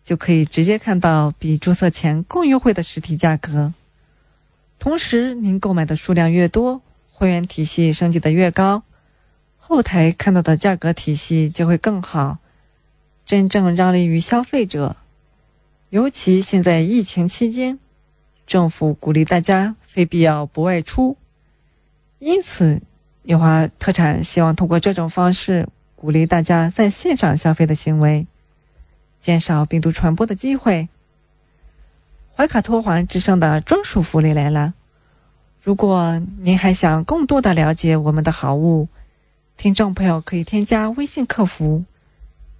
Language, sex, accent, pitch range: English, female, Chinese, 160-200 Hz